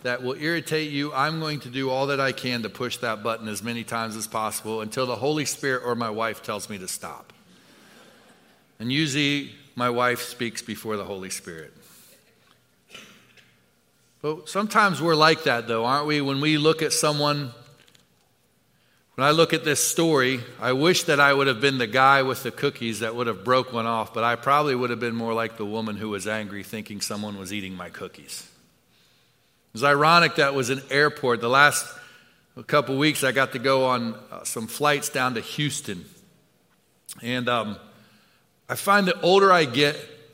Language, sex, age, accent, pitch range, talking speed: English, male, 40-59, American, 115-150 Hz, 190 wpm